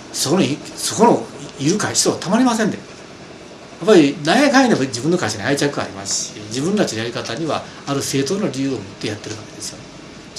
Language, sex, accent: Japanese, male, native